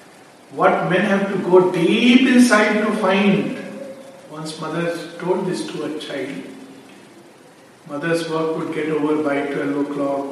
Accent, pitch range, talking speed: Indian, 150-185 Hz, 140 wpm